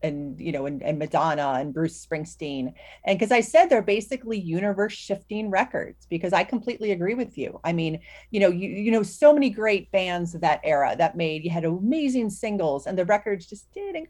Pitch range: 160-220 Hz